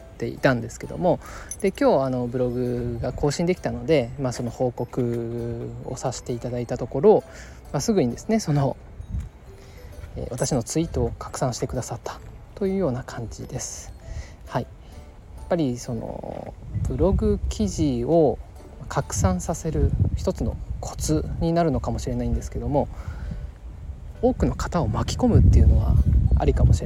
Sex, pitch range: male, 95-140 Hz